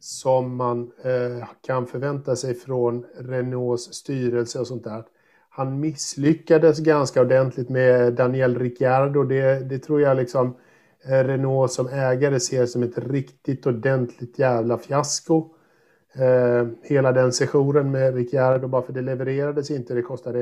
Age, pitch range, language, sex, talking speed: 50-69, 120-135 Hz, Swedish, male, 130 wpm